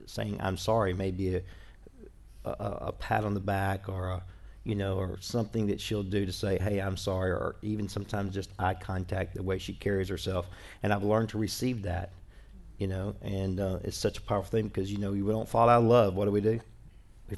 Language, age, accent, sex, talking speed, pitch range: English, 50-69, American, male, 225 wpm, 95-105 Hz